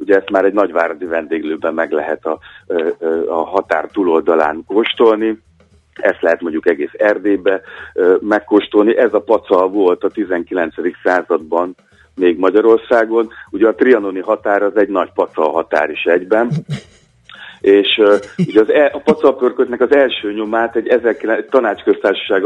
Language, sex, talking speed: Hungarian, male, 145 wpm